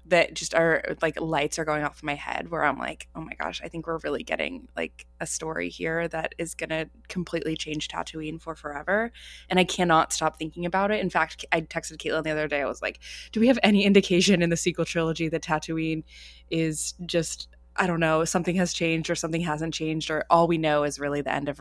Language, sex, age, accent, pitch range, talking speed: English, female, 20-39, American, 155-180 Hz, 235 wpm